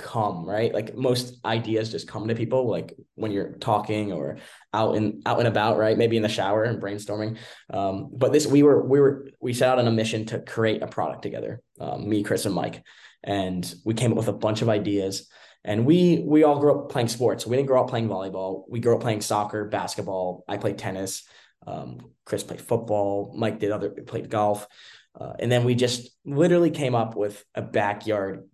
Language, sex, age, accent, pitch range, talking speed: English, male, 10-29, American, 100-115 Hz, 210 wpm